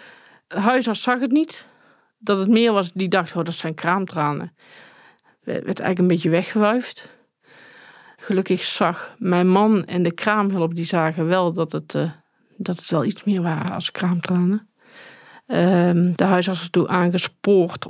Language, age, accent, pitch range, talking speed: Dutch, 50-69, Dutch, 175-200 Hz, 165 wpm